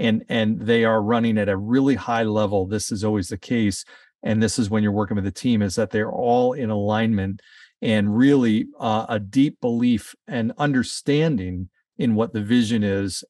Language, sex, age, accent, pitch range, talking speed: English, male, 40-59, American, 105-135 Hz, 195 wpm